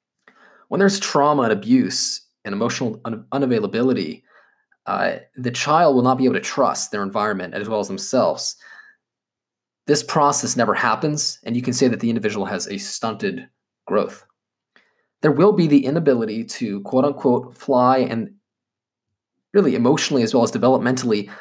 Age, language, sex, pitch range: 20-39, English, male, 115-175 Hz